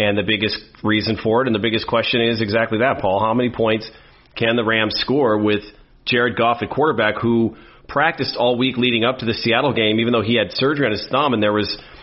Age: 40-59